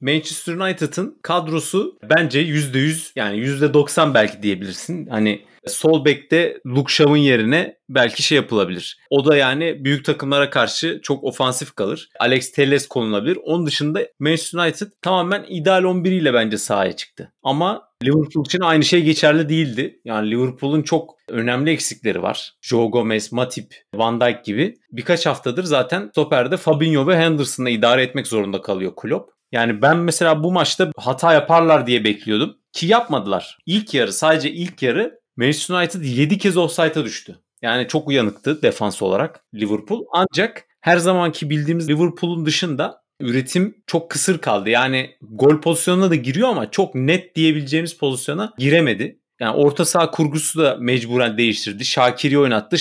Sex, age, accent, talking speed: male, 30-49, native, 145 wpm